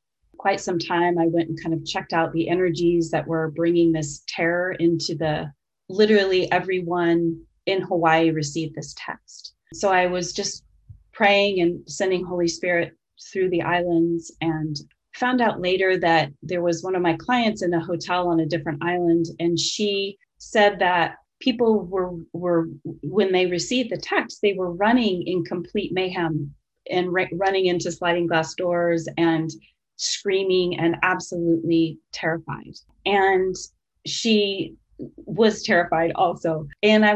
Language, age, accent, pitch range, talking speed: English, 30-49, American, 170-195 Hz, 150 wpm